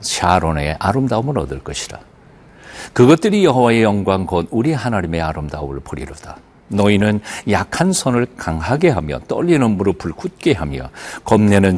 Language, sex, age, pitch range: Korean, male, 50-69, 85-140 Hz